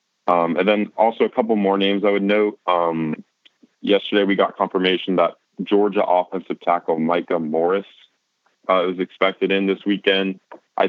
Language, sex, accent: English, male, American